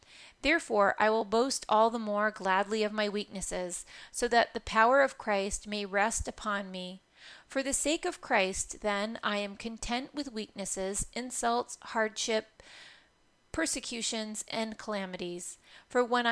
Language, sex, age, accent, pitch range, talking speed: English, female, 30-49, American, 200-240 Hz, 145 wpm